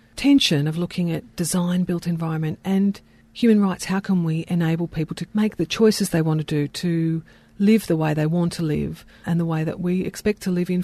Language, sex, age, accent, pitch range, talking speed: English, female, 40-59, Australian, 160-190 Hz, 220 wpm